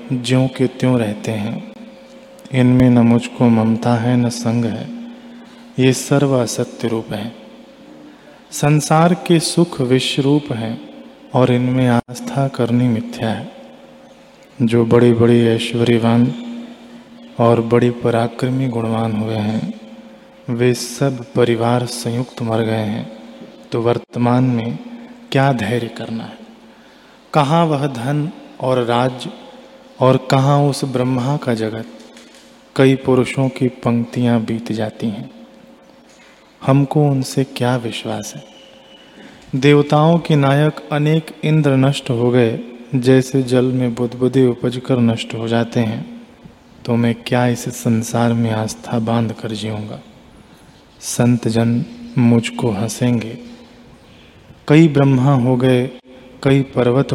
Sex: male